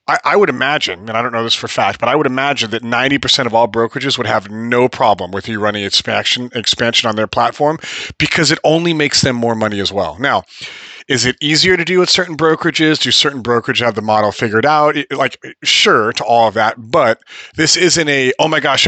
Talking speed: 225 wpm